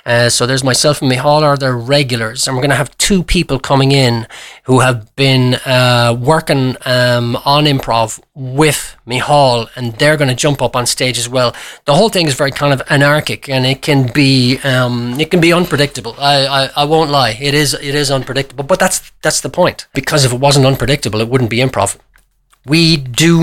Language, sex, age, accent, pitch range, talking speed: English, male, 30-49, Irish, 120-145 Hz, 215 wpm